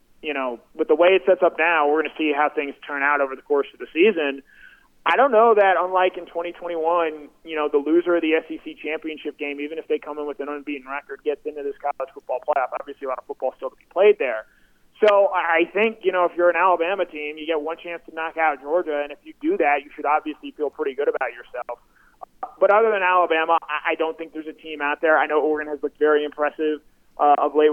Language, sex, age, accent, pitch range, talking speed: English, male, 30-49, American, 150-180 Hz, 255 wpm